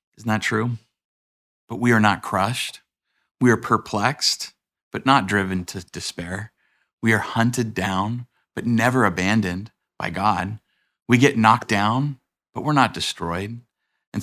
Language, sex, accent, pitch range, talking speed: English, male, American, 100-125 Hz, 145 wpm